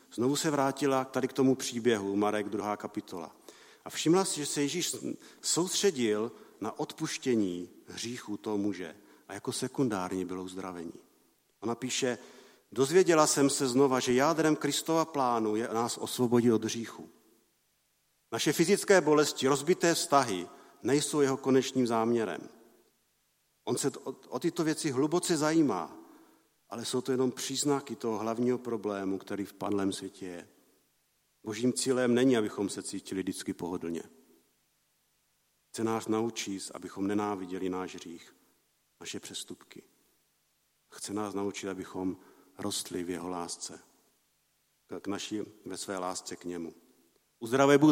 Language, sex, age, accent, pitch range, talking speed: Czech, male, 50-69, native, 100-140 Hz, 130 wpm